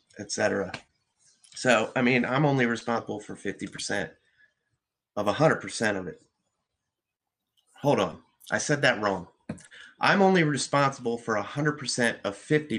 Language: English